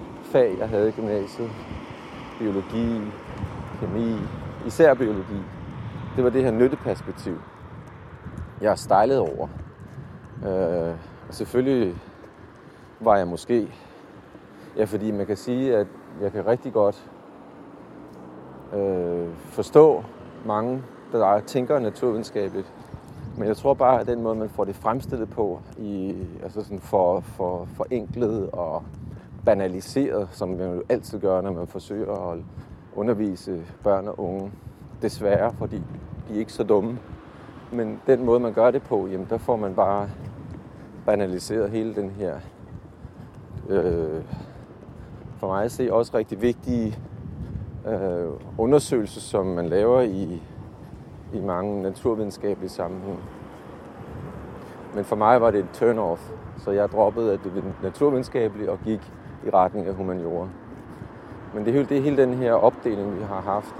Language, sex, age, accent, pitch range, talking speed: English, male, 30-49, Danish, 95-115 Hz, 135 wpm